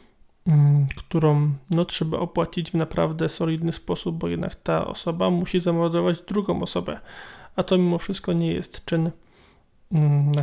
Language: Polish